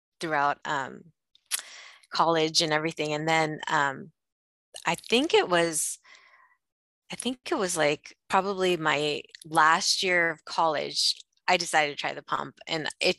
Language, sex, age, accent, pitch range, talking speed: English, female, 20-39, American, 150-175 Hz, 140 wpm